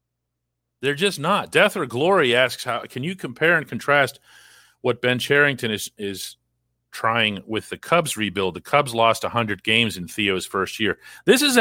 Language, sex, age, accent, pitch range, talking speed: English, male, 40-59, American, 90-145 Hz, 175 wpm